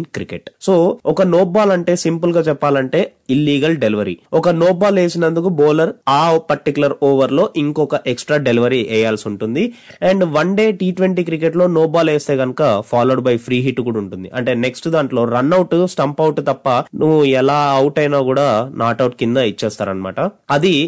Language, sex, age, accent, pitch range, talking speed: Telugu, male, 20-39, native, 130-170 Hz, 155 wpm